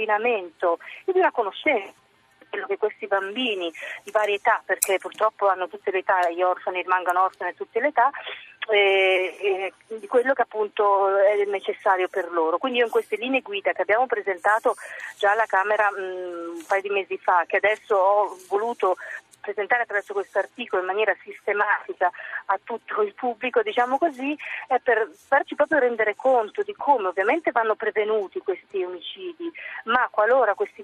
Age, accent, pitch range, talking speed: 40-59, native, 195-255 Hz, 165 wpm